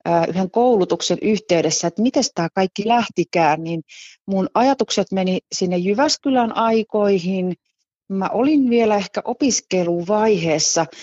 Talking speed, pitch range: 110 wpm, 170-215 Hz